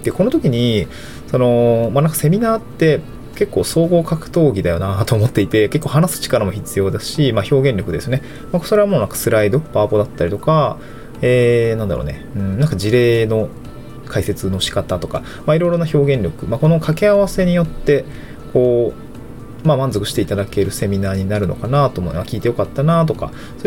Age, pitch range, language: 20-39, 105-150 Hz, Japanese